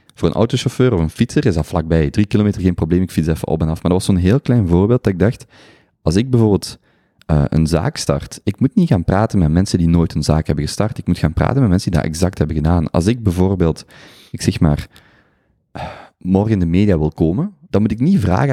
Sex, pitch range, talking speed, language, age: male, 80-110 Hz, 255 wpm, Dutch, 30-49